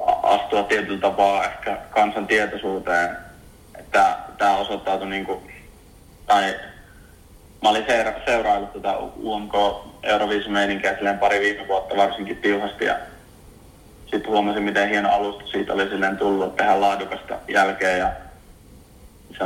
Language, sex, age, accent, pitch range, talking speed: Finnish, male, 30-49, native, 95-105 Hz, 110 wpm